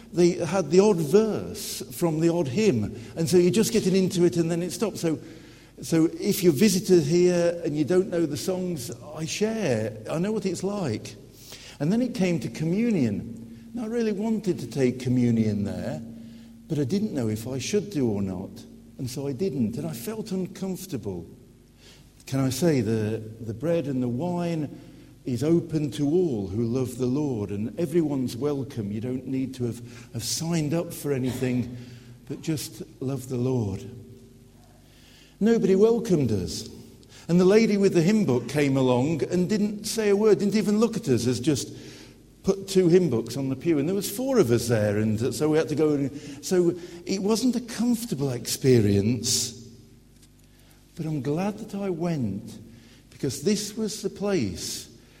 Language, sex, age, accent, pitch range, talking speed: English, male, 60-79, British, 125-185 Hz, 180 wpm